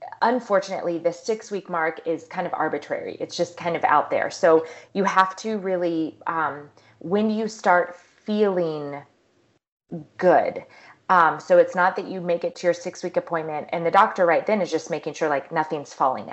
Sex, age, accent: female, 30-49, American